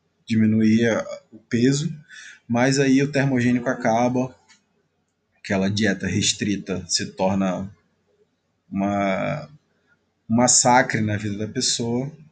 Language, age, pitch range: Portuguese, 20-39, 100-125 Hz